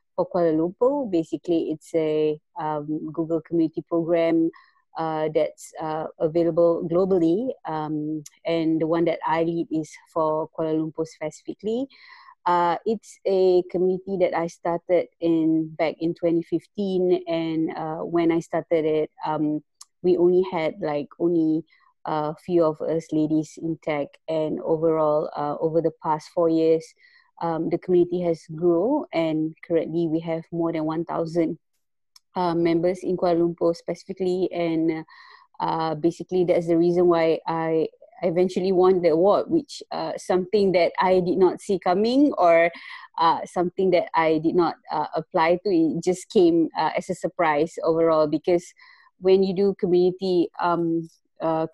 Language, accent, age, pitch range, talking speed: English, Malaysian, 20-39, 160-185 Hz, 150 wpm